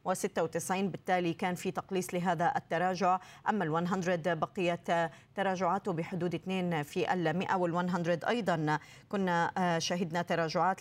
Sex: female